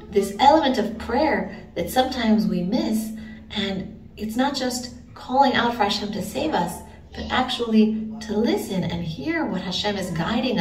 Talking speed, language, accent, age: 165 wpm, English, American, 40-59